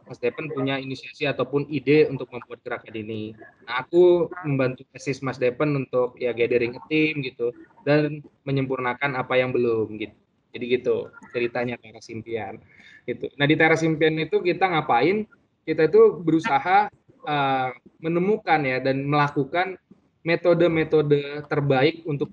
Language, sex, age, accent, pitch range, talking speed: Indonesian, male, 20-39, native, 125-160 Hz, 140 wpm